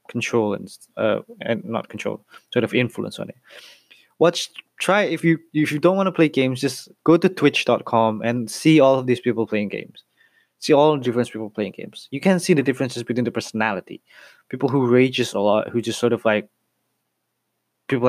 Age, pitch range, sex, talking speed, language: 20-39, 115-145 Hz, male, 200 wpm, Indonesian